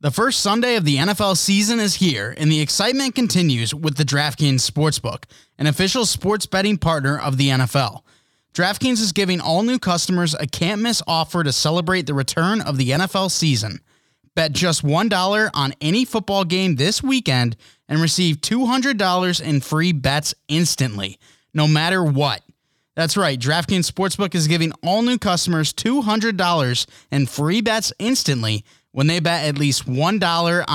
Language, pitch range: English, 145-190 Hz